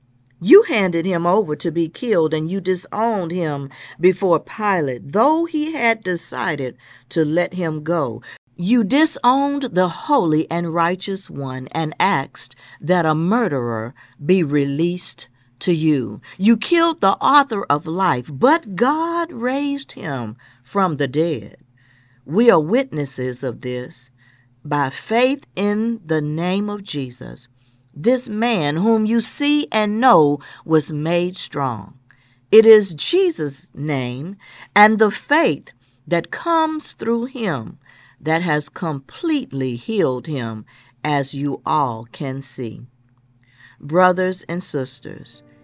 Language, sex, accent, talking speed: English, female, American, 125 wpm